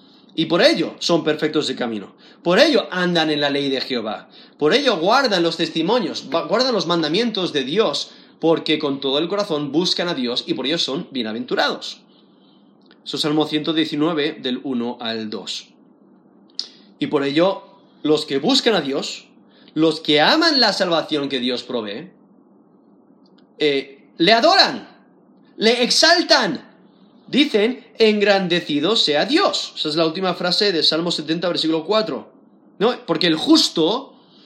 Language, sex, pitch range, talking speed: Spanish, male, 155-220 Hz, 145 wpm